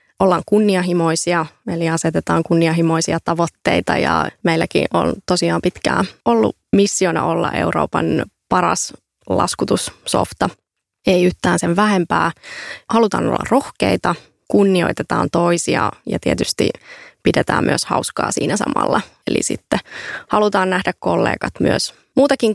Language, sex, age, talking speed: Finnish, female, 20-39, 105 wpm